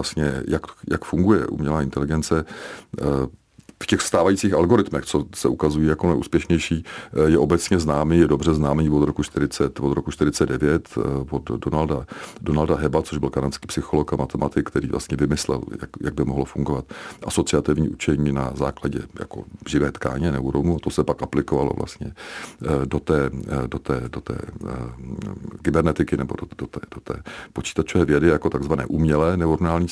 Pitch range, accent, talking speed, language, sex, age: 70-85 Hz, native, 160 wpm, Czech, male, 40-59